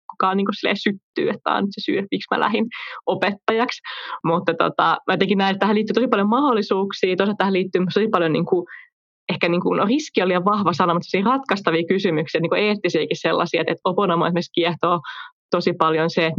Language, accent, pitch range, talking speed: Finnish, native, 165-210 Hz, 200 wpm